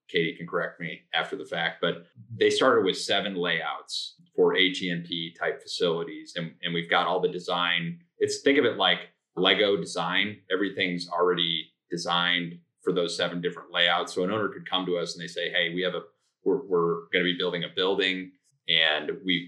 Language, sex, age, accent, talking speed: English, male, 30-49, American, 190 wpm